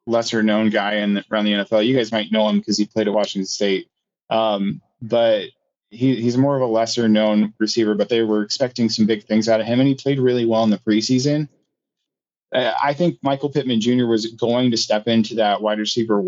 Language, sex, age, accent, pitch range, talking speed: English, male, 20-39, American, 105-125 Hz, 220 wpm